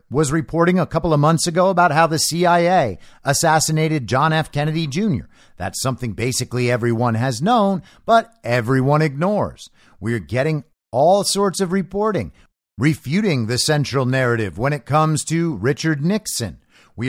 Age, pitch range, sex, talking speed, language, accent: 50-69, 130-190 Hz, male, 150 wpm, English, American